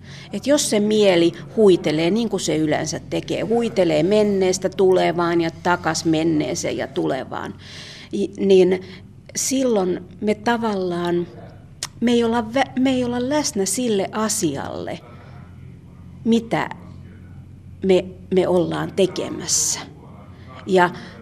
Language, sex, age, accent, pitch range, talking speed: Finnish, female, 40-59, native, 165-220 Hz, 105 wpm